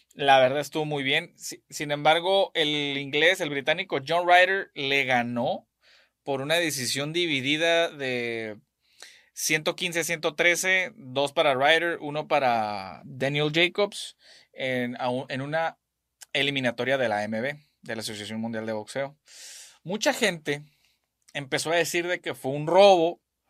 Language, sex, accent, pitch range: Spanish, male, Mexican, 130-170 Hz